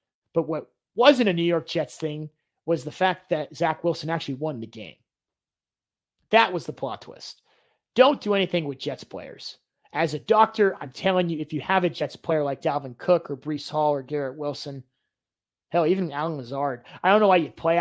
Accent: American